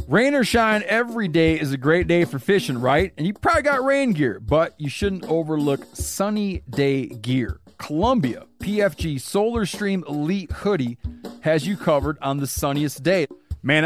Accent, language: American, English